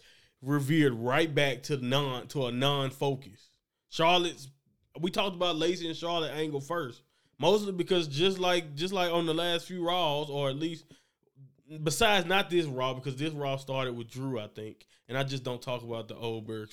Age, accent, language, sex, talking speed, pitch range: 20-39, American, English, male, 185 wpm, 130-175 Hz